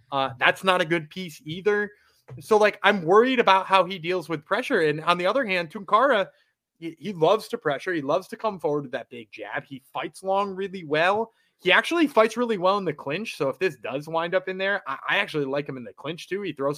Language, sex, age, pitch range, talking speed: English, male, 20-39, 145-190 Hz, 245 wpm